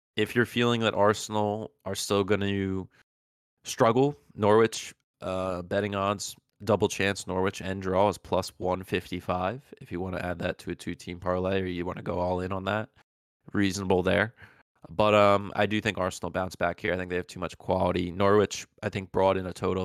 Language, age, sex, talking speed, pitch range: English, 20-39, male, 200 wpm, 90-100 Hz